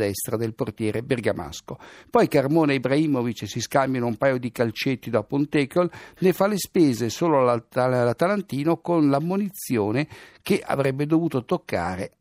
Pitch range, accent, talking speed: 115-160 Hz, native, 140 wpm